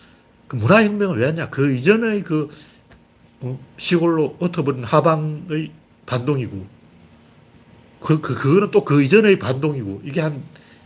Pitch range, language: 120-180 Hz, Korean